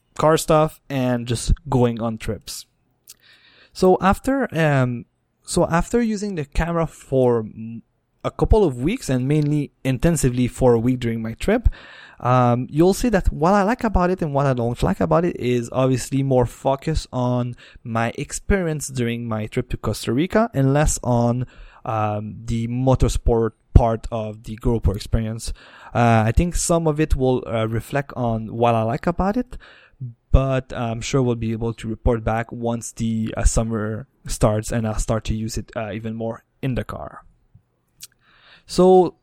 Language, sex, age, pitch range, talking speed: English, male, 20-39, 115-145 Hz, 170 wpm